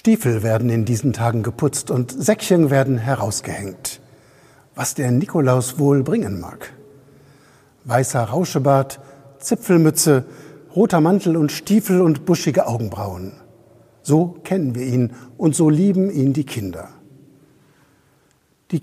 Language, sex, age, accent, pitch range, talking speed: German, male, 60-79, German, 120-160 Hz, 120 wpm